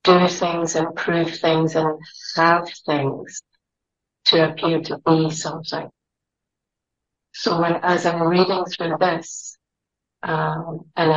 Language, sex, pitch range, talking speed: English, female, 155-165 Hz, 115 wpm